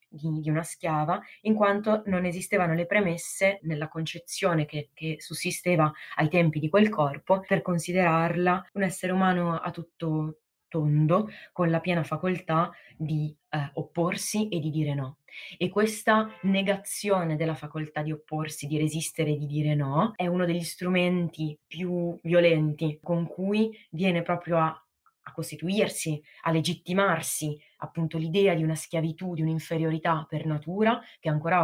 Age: 20-39